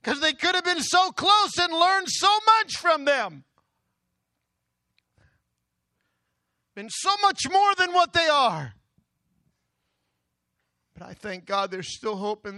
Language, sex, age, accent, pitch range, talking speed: English, male, 50-69, American, 175-280 Hz, 140 wpm